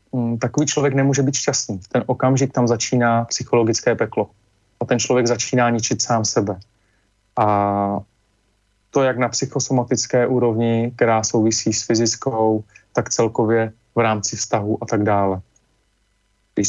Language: Czech